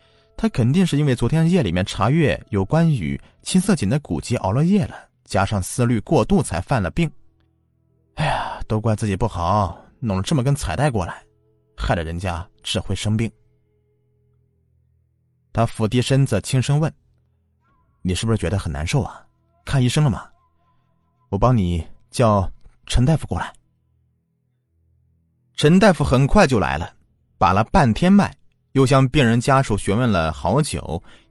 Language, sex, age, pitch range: Chinese, male, 30-49, 95-135 Hz